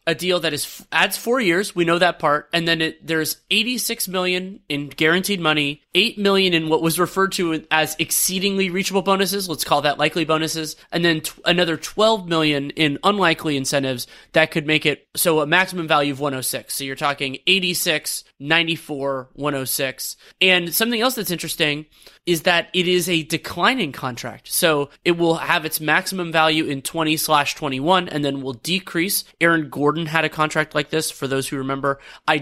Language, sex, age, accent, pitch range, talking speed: English, male, 20-39, American, 145-175 Hz, 185 wpm